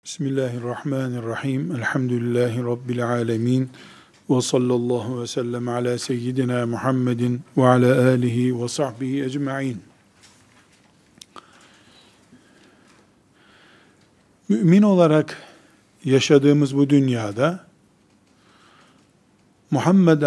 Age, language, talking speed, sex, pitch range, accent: 50-69, Turkish, 70 wpm, male, 130-160 Hz, native